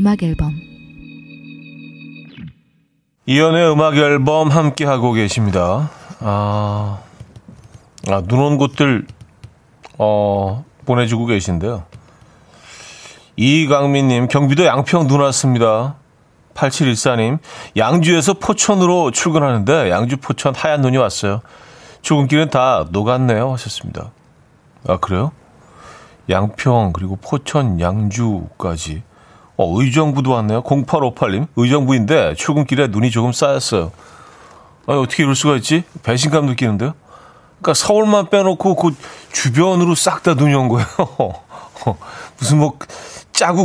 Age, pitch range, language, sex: 40-59, 105-145 Hz, Korean, male